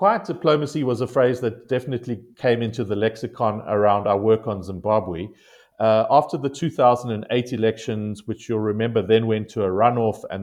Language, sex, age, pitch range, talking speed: English, male, 40-59, 110-125 Hz, 175 wpm